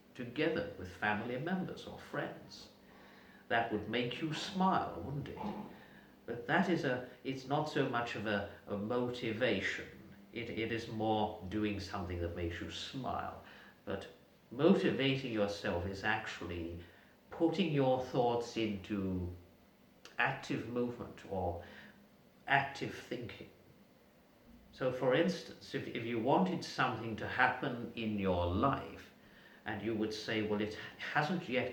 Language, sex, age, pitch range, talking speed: English, male, 50-69, 105-135 Hz, 130 wpm